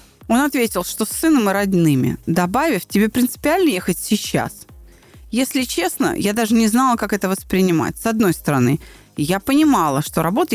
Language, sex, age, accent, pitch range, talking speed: Russian, female, 30-49, native, 180-260 Hz, 160 wpm